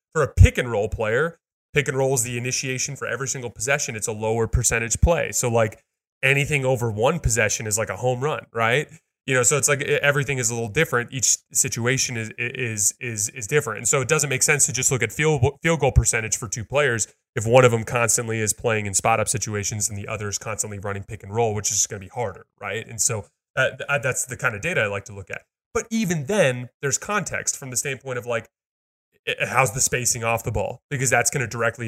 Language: English